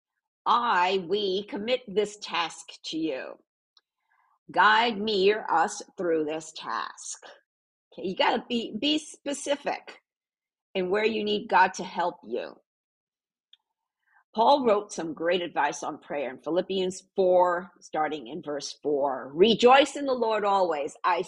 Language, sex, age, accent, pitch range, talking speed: English, female, 50-69, American, 175-270 Hz, 135 wpm